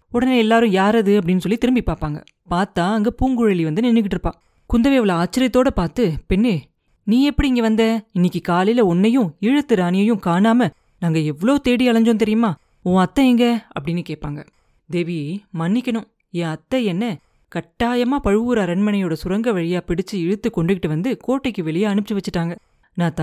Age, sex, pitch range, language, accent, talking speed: 30-49, female, 180-235 Hz, Tamil, native, 140 wpm